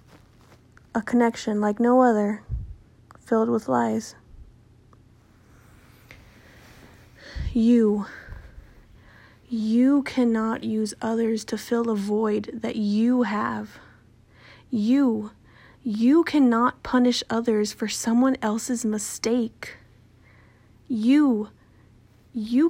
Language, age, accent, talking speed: English, 20-39, American, 80 wpm